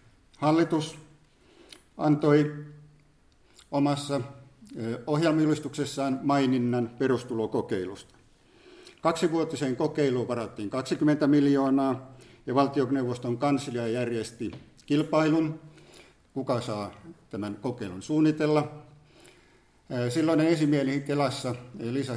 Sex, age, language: male, 50-69, Finnish